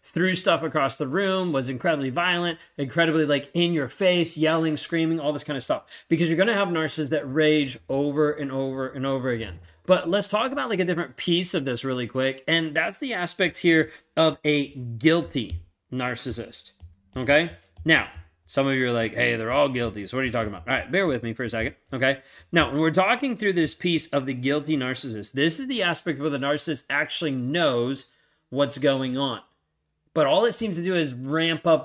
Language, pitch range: English, 130-165 Hz